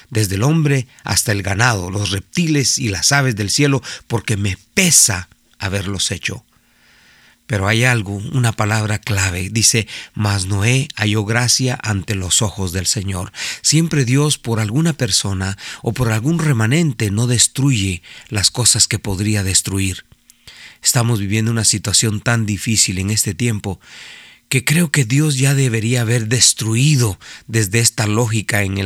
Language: Spanish